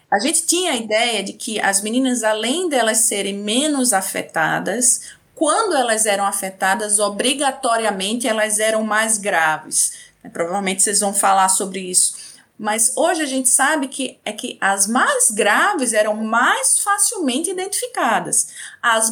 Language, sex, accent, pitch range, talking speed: Portuguese, female, Brazilian, 215-275 Hz, 145 wpm